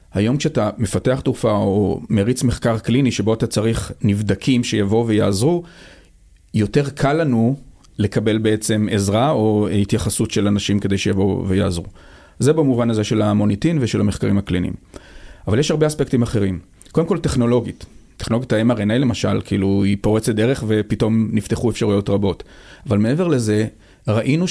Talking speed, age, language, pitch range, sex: 140 wpm, 40-59, Hebrew, 105-130 Hz, male